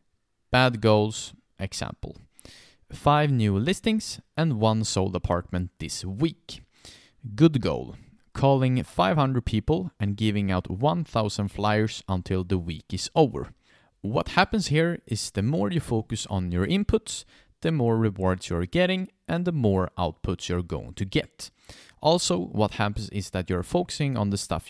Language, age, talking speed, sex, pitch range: English, 30-49, 150 wpm, male, 95-135 Hz